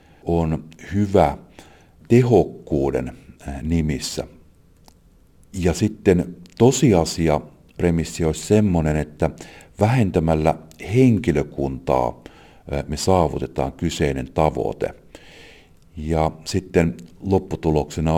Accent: native